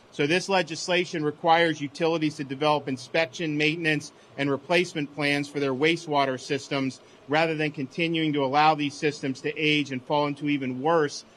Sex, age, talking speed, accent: male, 40-59, 160 wpm, American